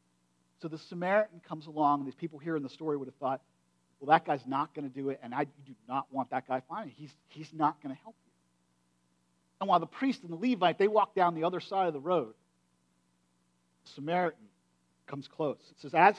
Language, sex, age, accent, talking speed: English, male, 50-69, American, 230 wpm